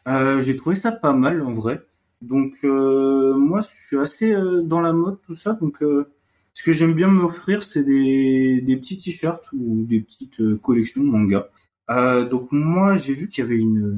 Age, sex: 30-49, male